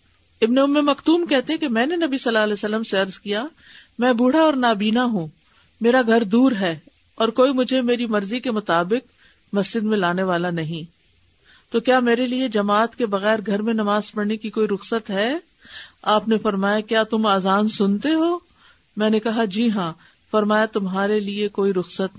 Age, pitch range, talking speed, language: 50-69, 190-240 Hz, 190 wpm, Urdu